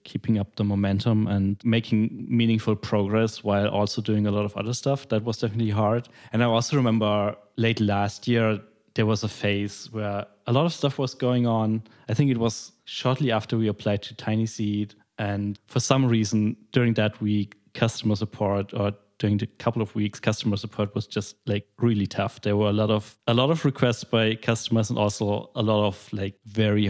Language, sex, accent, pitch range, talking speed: English, male, German, 105-115 Hz, 200 wpm